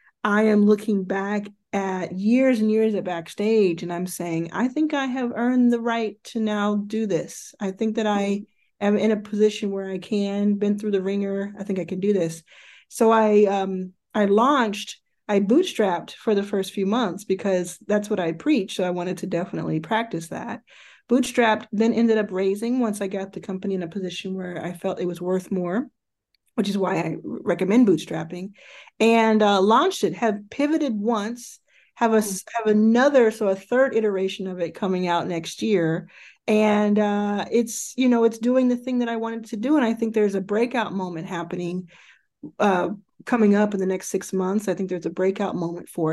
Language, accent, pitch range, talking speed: English, American, 190-225 Hz, 200 wpm